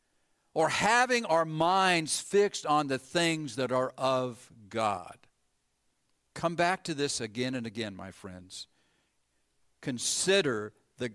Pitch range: 125-175 Hz